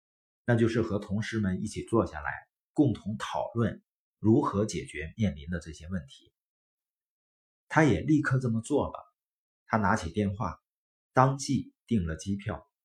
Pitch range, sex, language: 85-135 Hz, male, Chinese